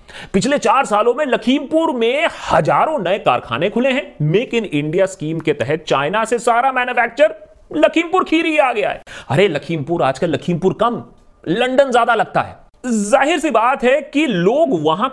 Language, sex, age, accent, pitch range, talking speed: Hindi, male, 30-49, native, 175-285 Hz, 170 wpm